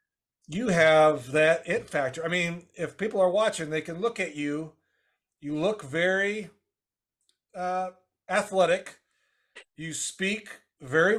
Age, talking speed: 40-59, 130 wpm